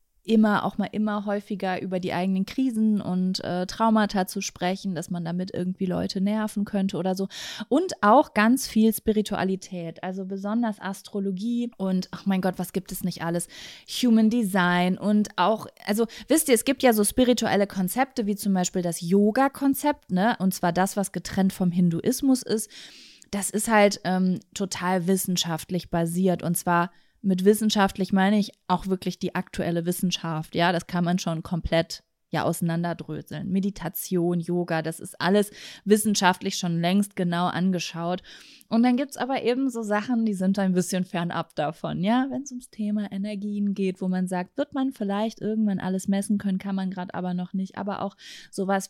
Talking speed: 175 wpm